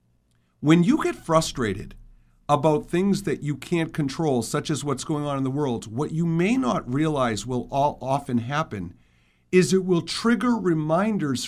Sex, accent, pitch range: male, American, 130-185 Hz